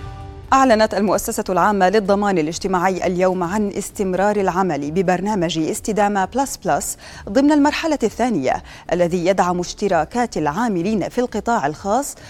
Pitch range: 175-245 Hz